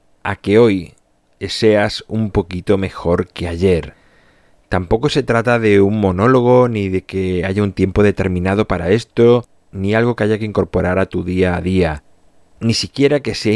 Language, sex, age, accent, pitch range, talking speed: Spanish, male, 30-49, Spanish, 90-105 Hz, 175 wpm